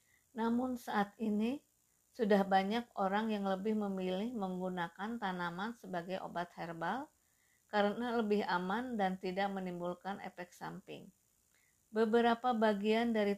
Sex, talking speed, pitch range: female, 110 wpm, 185-215 Hz